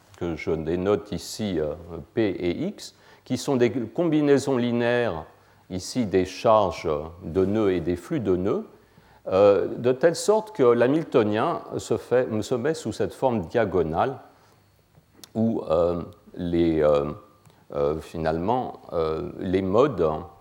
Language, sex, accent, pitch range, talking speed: French, male, French, 85-115 Hz, 135 wpm